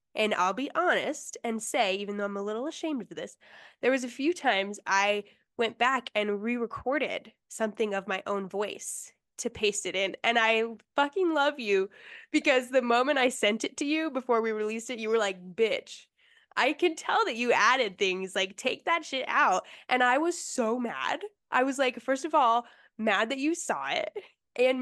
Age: 10-29